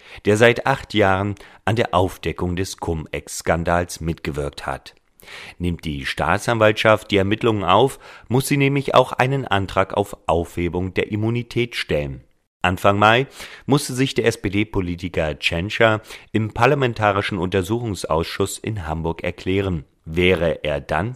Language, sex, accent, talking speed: German, male, German, 125 wpm